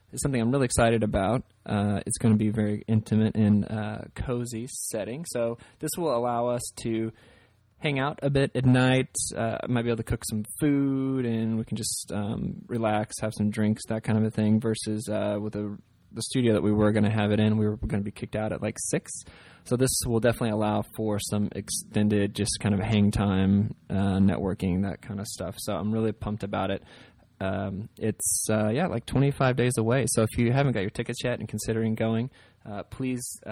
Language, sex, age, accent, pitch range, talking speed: English, male, 20-39, American, 105-125 Hz, 215 wpm